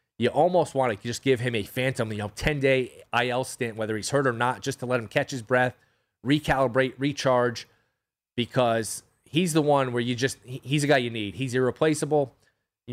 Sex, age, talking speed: male, 30-49, 200 wpm